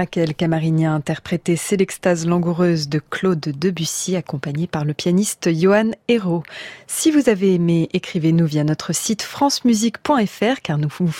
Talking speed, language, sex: 160 wpm, French, female